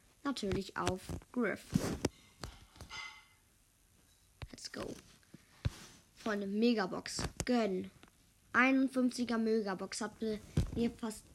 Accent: German